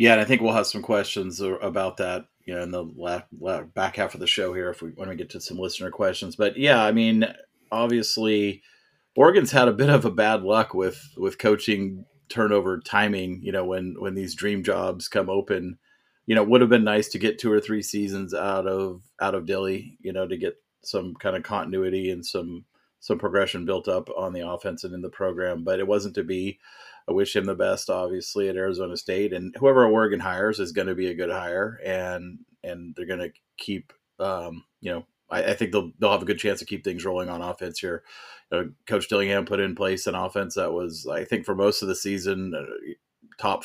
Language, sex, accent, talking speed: English, male, American, 230 wpm